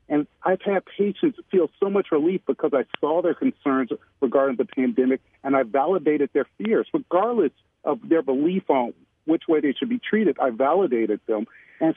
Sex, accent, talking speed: male, American, 180 wpm